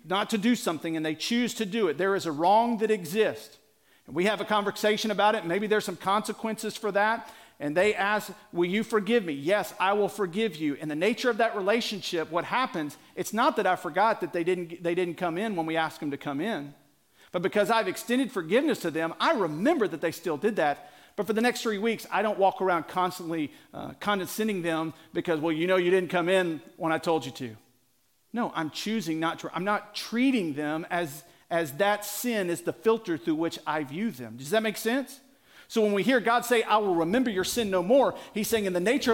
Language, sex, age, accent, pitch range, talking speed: English, male, 50-69, American, 165-225 Hz, 235 wpm